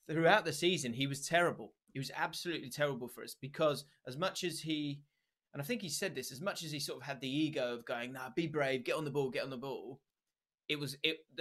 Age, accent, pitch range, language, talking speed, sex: 20-39, British, 125-160 Hz, English, 250 wpm, male